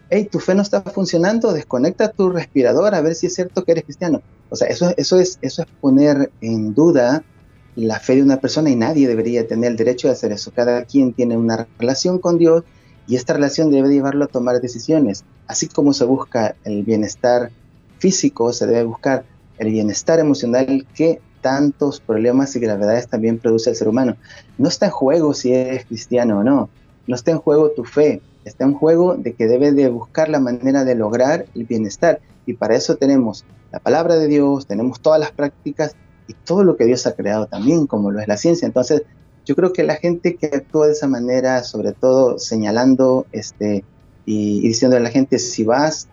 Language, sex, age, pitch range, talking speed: Spanish, male, 30-49, 120-155 Hz, 205 wpm